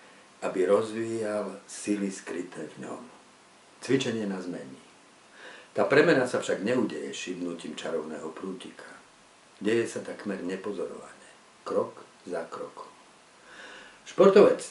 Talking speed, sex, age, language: 100 wpm, male, 50-69, Slovak